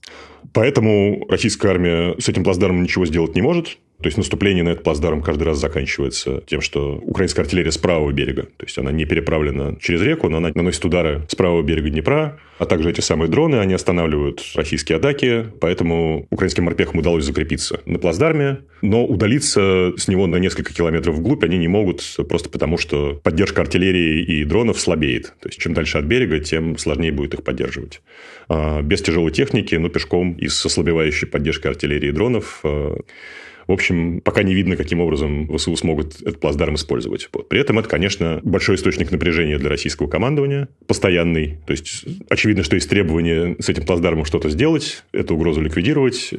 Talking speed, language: 175 wpm, Russian